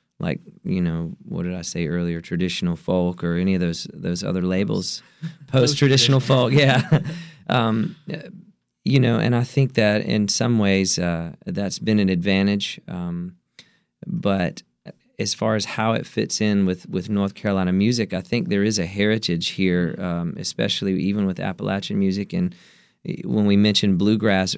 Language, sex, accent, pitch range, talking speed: English, male, American, 95-110 Hz, 165 wpm